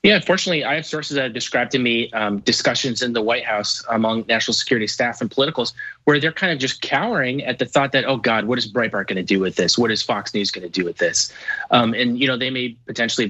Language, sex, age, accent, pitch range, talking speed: English, male, 30-49, American, 110-135 Hz, 260 wpm